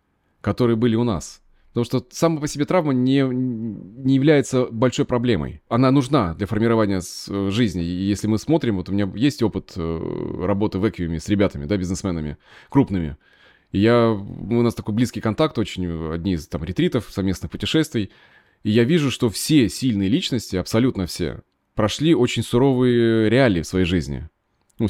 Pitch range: 95-130 Hz